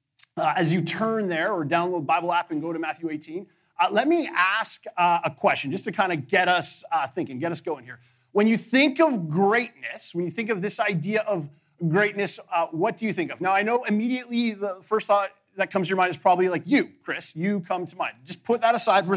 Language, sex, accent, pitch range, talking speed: English, male, American, 160-215 Hz, 245 wpm